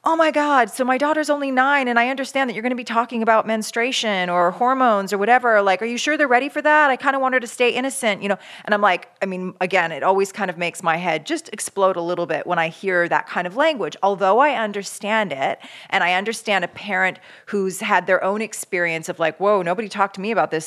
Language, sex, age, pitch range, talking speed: English, female, 40-59, 170-230 Hz, 260 wpm